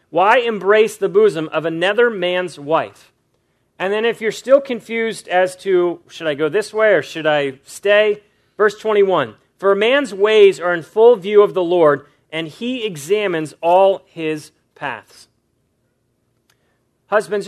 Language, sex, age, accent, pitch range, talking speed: English, male, 40-59, American, 155-215 Hz, 155 wpm